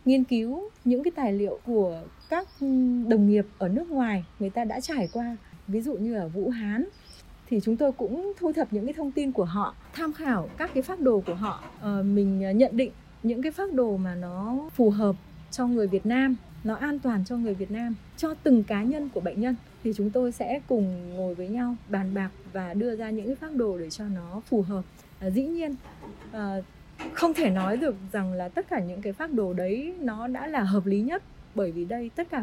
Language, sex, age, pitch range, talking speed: Vietnamese, female, 20-39, 200-270 Hz, 230 wpm